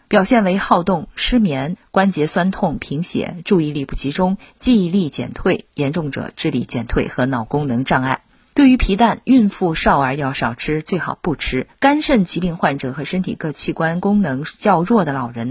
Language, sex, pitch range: Chinese, female, 145-225 Hz